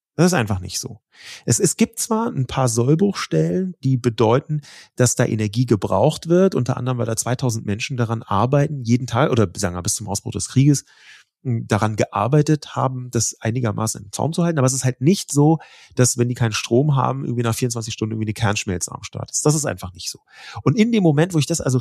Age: 30-49